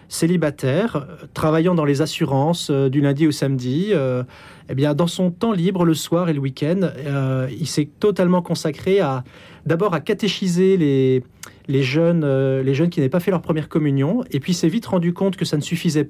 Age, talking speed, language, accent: 40-59, 210 wpm, French, French